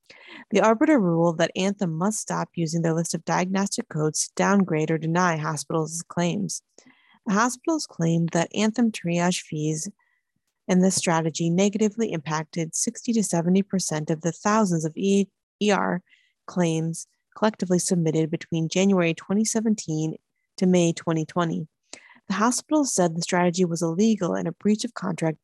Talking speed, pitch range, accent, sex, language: 140 wpm, 170-215 Hz, American, female, English